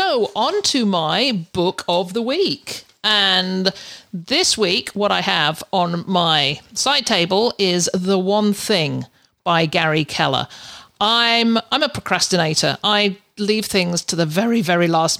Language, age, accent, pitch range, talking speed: English, 50-69, British, 175-215 Hz, 145 wpm